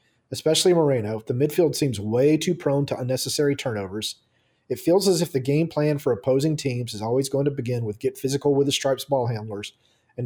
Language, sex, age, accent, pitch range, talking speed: English, male, 40-59, American, 125-150 Hz, 205 wpm